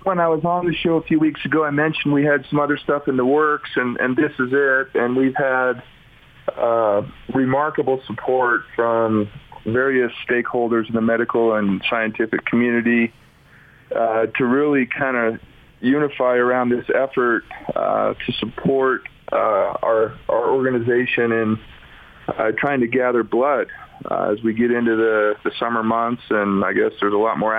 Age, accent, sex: 40-59, American, male